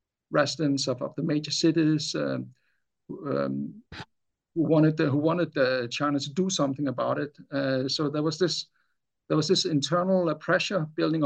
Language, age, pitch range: English, 50-69, 140-165 Hz